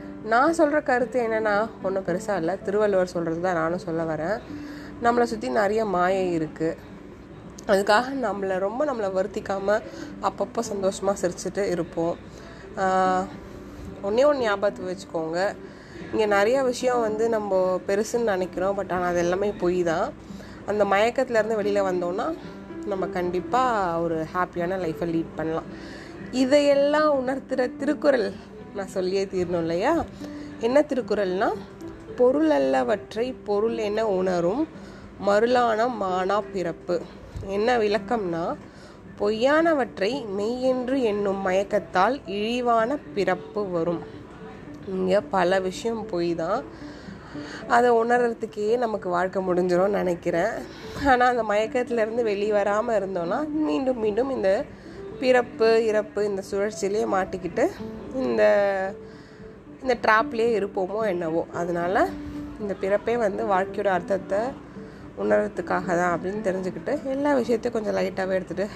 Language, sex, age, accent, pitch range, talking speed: Tamil, female, 20-39, native, 180-235 Hz, 110 wpm